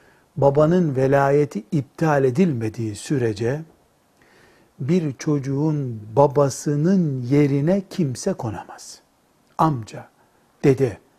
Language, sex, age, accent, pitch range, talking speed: Turkish, male, 60-79, native, 135-180 Hz, 70 wpm